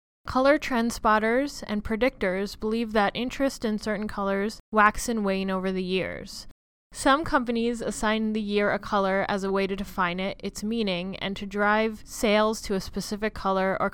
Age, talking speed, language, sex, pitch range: 20-39, 175 wpm, English, female, 195-235 Hz